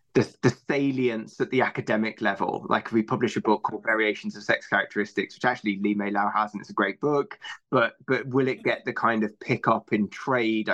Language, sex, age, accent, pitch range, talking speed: English, male, 20-39, British, 105-125 Hz, 225 wpm